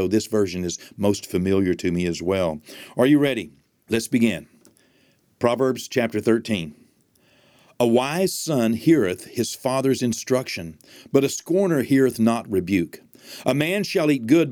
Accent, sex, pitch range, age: American, male, 100-130 Hz, 50-69